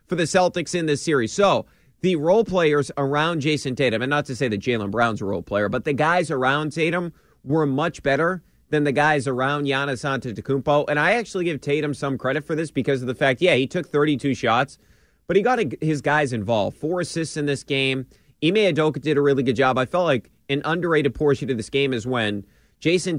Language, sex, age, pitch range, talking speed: English, male, 30-49, 130-160 Hz, 220 wpm